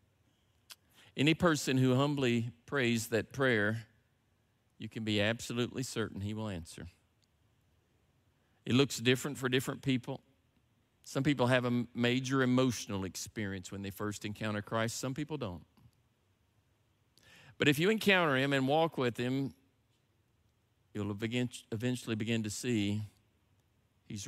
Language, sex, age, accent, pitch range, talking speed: English, male, 50-69, American, 105-130 Hz, 125 wpm